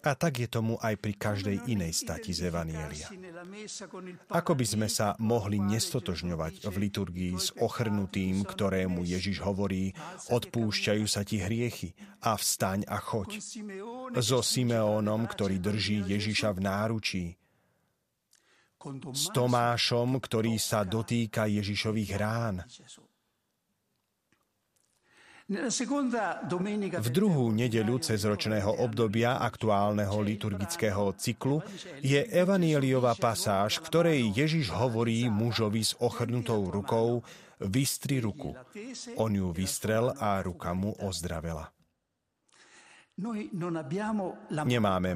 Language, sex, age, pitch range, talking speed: Slovak, male, 40-59, 100-130 Hz, 100 wpm